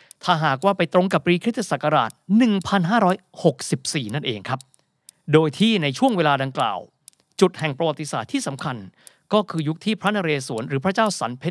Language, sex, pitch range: Thai, male, 140-195 Hz